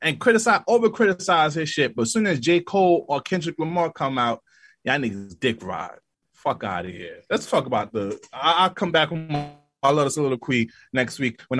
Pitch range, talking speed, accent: 115-150 Hz, 215 wpm, American